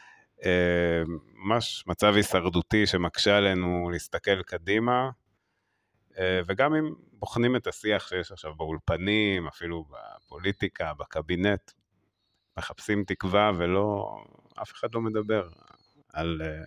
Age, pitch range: 30-49, 85-105 Hz